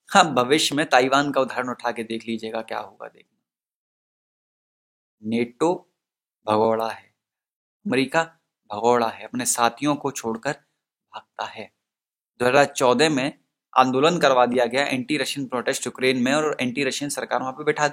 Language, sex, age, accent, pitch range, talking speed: Hindi, male, 20-39, native, 115-150 Hz, 145 wpm